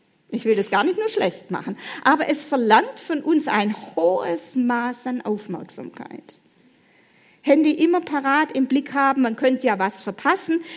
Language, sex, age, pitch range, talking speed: German, female, 40-59, 205-290 Hz, 160 wpm